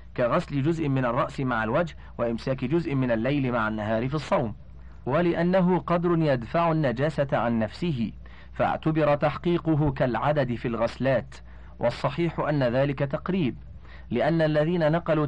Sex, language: male, Arabic